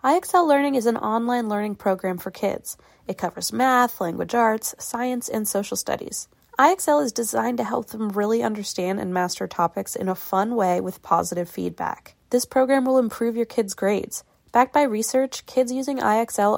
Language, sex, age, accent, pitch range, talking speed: English, female, 20-39, American, 195-245 Hz, 175 wpm